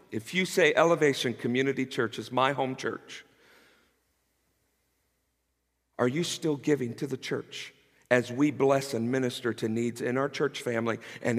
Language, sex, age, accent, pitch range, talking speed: English, male, 50-69, American, 130-185 Hz, 155 wpm